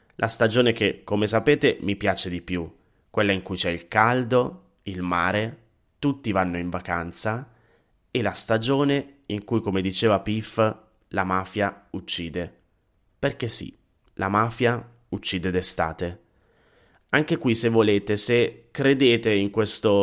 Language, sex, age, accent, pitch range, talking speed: Italian, male, 30-49, native, 95-120 Hz, 140 wpm